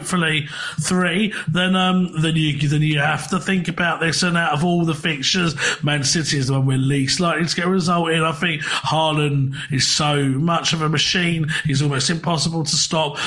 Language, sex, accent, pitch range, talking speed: English, male, British, 150-175 Hz, 210 wpm